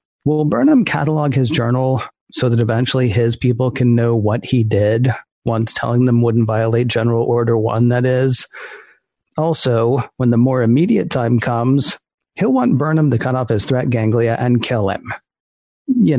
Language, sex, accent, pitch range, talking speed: English, male, American, 120-140 Hz, 165 wpm